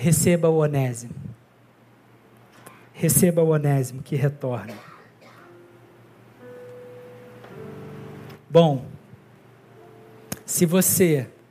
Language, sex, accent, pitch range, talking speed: Portuguese, male, Brazilian, 130-185 Hz, 55 wpm